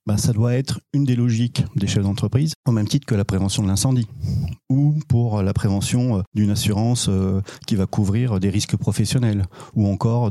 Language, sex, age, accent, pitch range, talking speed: French, male, 40-59, French, 105-135 Hz, 185 wpm